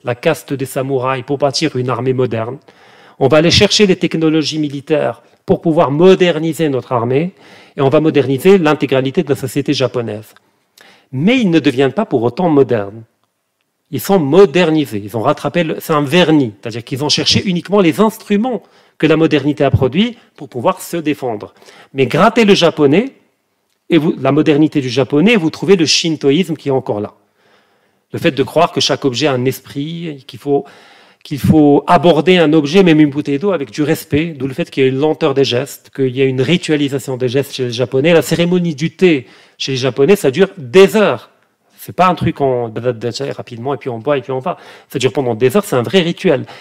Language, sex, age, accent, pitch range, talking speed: French, male, 40-59, French, 130-170 Hz, 205 wpm